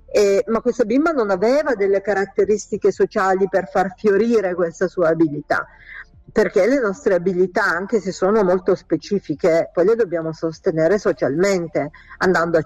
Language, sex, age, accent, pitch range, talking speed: Italian, female, 50-69, native, 165-215 Hz, 145 wpm